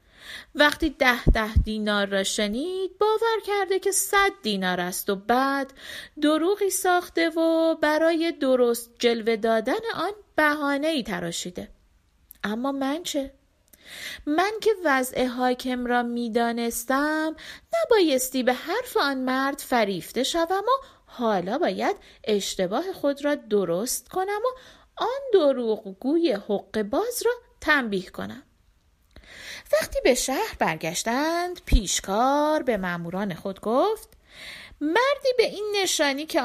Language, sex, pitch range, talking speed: Persian, female, 210-335 Hz, 120 wpm